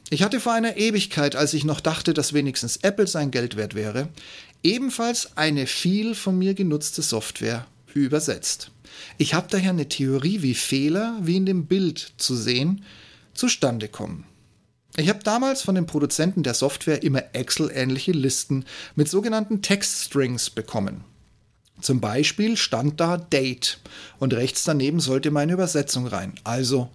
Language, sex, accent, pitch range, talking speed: German, male, German, 130-180 Hz, 150 wpm